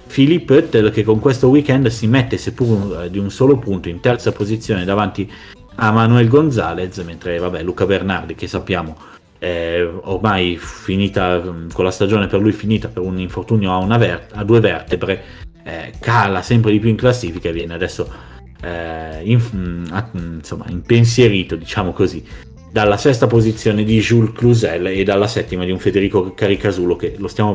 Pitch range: 90-115 Hz